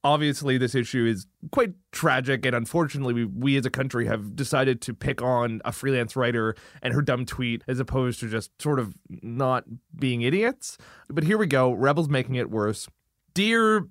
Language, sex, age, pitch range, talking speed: English, male, 20-39, 120-155 Hz, 185 wpm